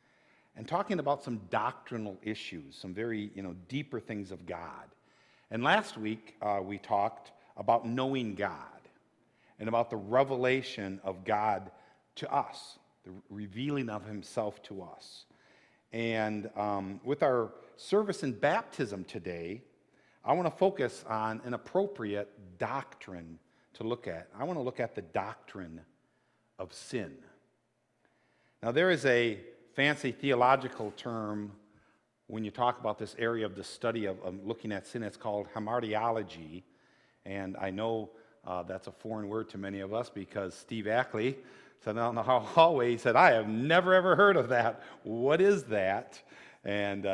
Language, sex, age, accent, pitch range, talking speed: English, male, 50-69, American, 100-120 Hz, 155 wpm